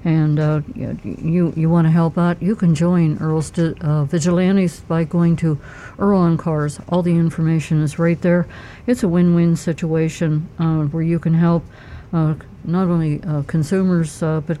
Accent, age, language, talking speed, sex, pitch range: American, 60-79, English, 175 wpm, female, 155-180 Hz